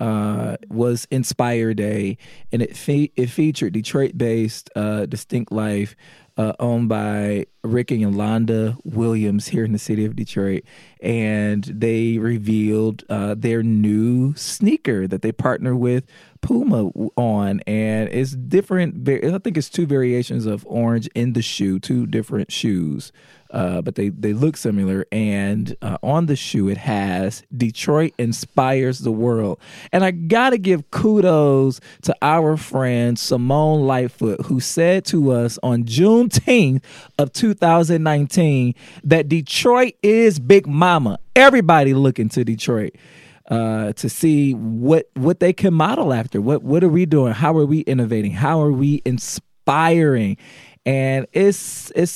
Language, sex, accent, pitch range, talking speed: English, male, American, 110-155 Hz, 140 wpm